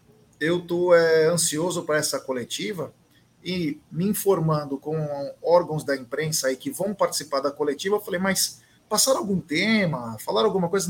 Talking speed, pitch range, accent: 160 wpm, 145-195 Hz, Brazilian